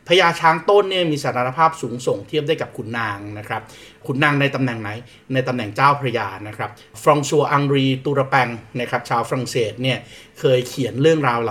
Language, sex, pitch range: Thai, male, 120-140 Hz